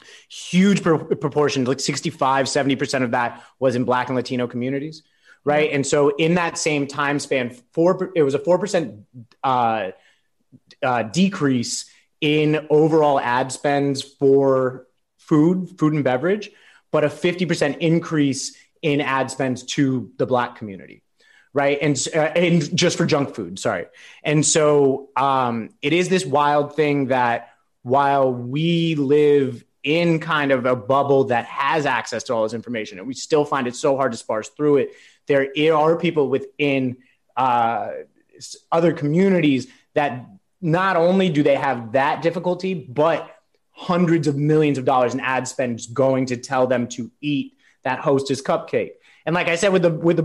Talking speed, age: 160 wpm, 30-49